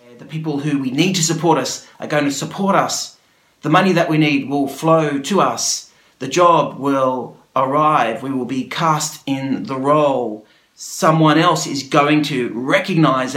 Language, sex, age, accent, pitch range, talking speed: English, male, 40-59, Australian, 120-155 Hz, 175 wpm